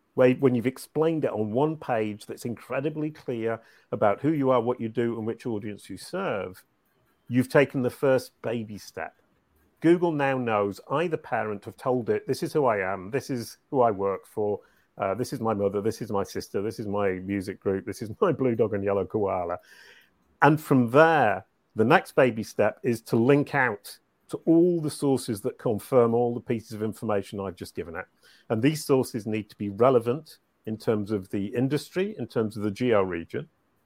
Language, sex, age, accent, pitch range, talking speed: English, male, 40-59, British, 110-145 Hz, 200 wpm